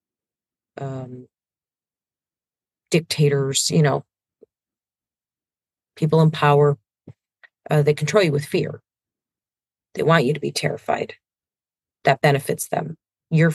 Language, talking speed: English, 100 wpm